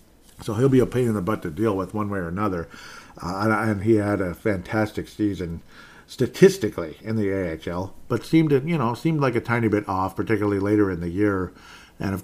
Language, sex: English, male